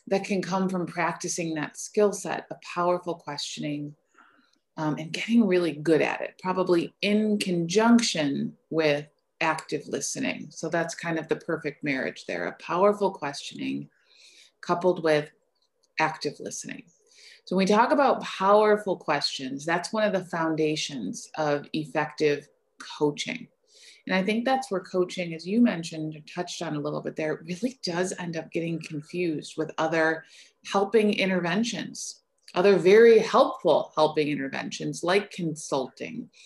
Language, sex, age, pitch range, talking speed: English, female, 30-49, 155-210 Hz, 140 wpm